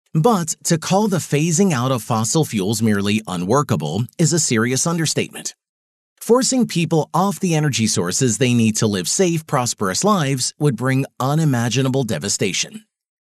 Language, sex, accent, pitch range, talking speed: English, male, American, 120-170 Hz, 145 wpm